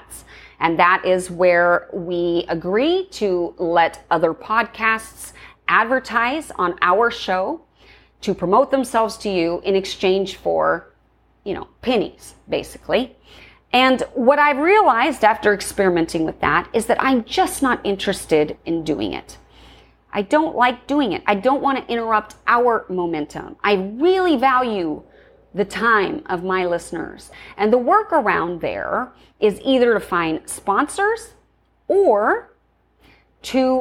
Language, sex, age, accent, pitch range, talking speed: English, female, 30-49, American, 180-260 Hz, 130 wpm